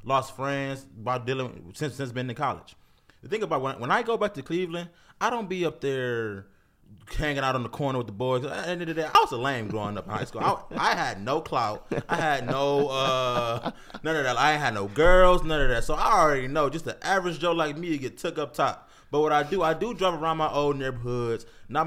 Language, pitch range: English, 125-165 Hz